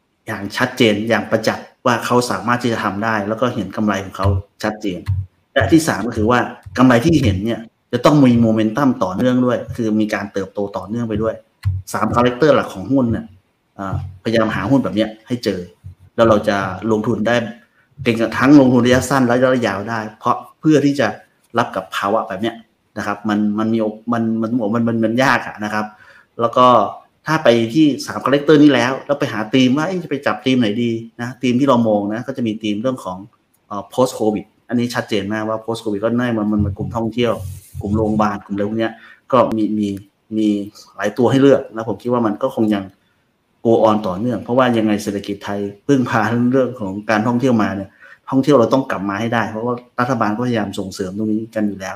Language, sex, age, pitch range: Thai, male, 30-49, 105-120 Hz